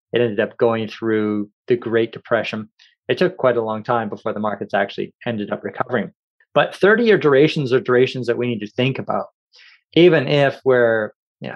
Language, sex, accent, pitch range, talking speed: English, male, American, 110-140 Hz, 185 wpm